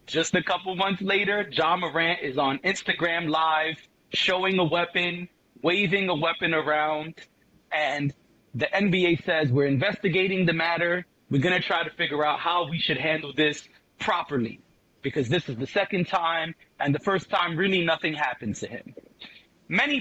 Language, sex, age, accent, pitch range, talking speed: English, male, 30-49, American, 155-185 Hz, 165 wpm